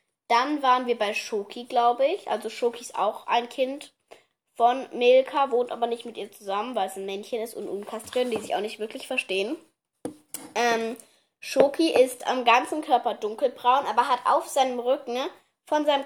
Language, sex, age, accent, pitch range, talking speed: German, female, 20-39, German, 230-285 Hz, 180 wpm